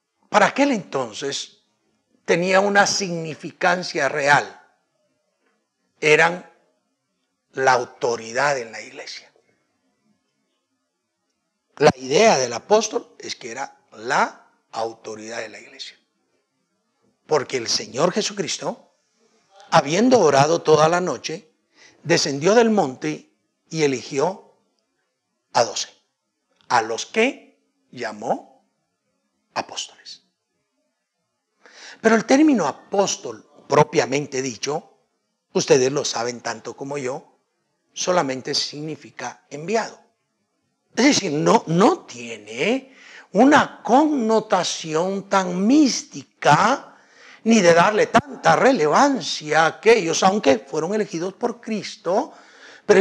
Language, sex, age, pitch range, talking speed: Spanish, male, 60-79, 145-225 Hz, 95 wpm